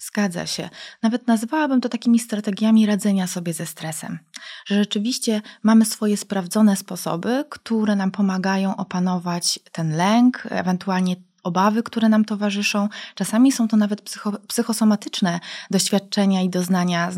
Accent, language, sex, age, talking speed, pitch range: native, Polish, female, 20-39, 130 wpm, 175-220 Hz